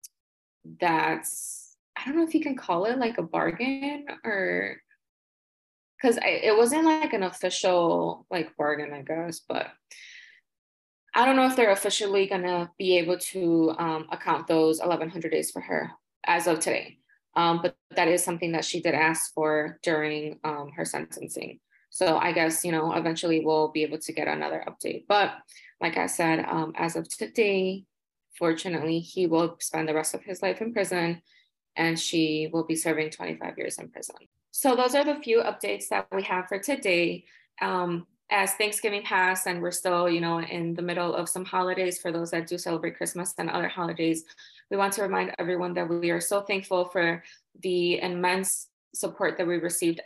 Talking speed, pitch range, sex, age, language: 185 wpm, 165-195 Hz, female, 20-39, English